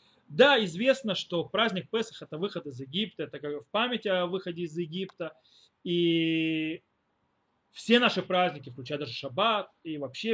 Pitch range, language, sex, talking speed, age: 165-225 Hz, Russian, male, 150 wpm, 30-49